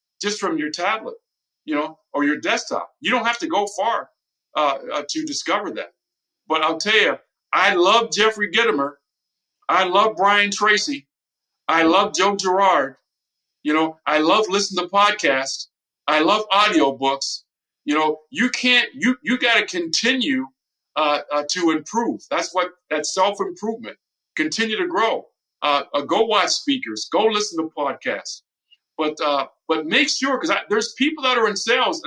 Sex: male